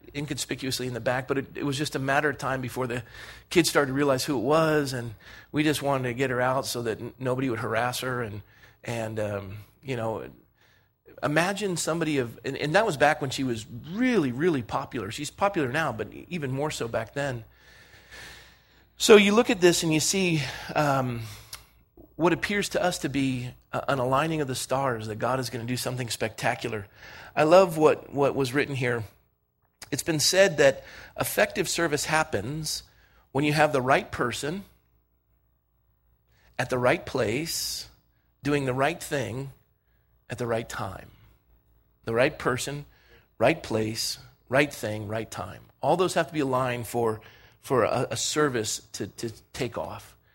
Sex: male